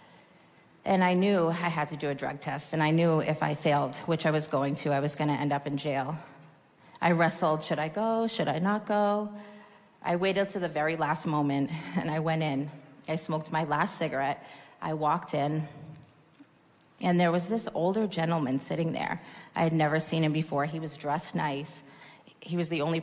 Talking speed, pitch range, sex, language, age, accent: 205 wpm, 150-185 Hz, female, English, 30-49, American